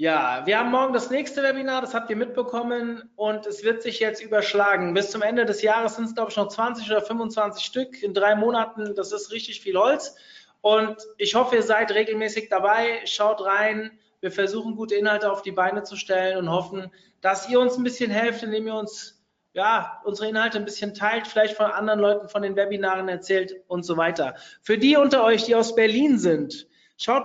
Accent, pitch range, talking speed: German, 200-230 Hz, 205 wpm